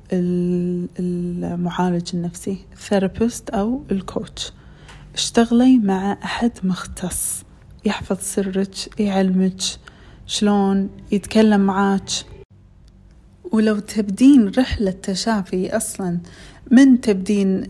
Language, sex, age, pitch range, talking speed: Arabic, female, 30-49, 180-205 Hz, 75 wpm